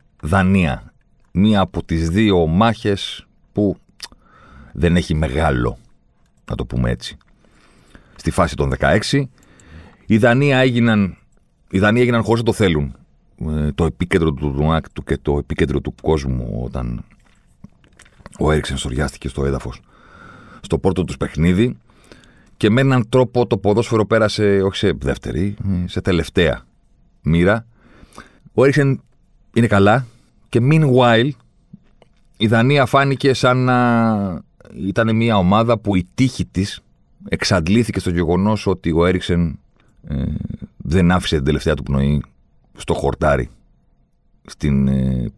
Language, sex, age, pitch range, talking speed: Greek, male, 40-59, 75-110 Hz, 125 wpm